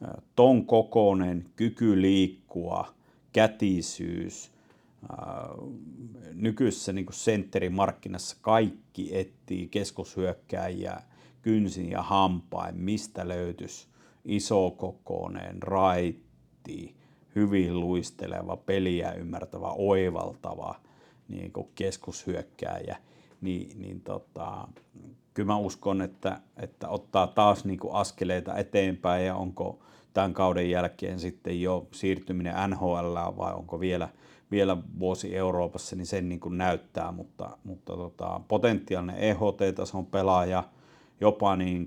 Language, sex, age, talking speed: Finnish, male, 50-69, 95 wpm